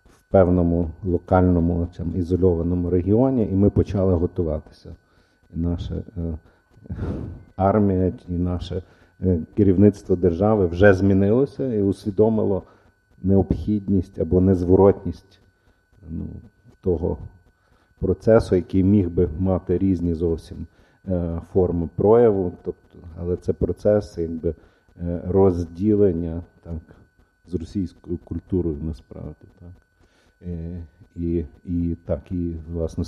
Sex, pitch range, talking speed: male, 85-95 Hz, 100 wpm